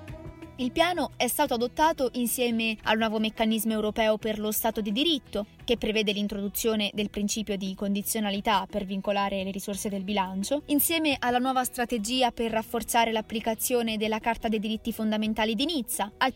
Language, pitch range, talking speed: Italian, 210-260 Hz, 160 wpm